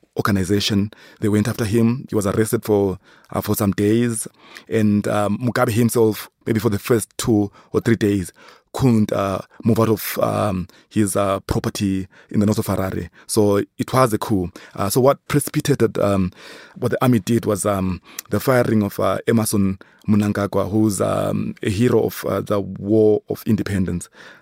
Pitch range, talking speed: 100-115 Hz, 175 wpm